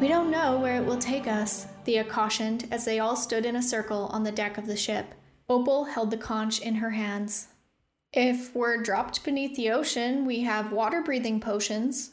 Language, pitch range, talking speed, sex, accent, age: English, 215-260 Hz, 200 wpm, female, American, 10-29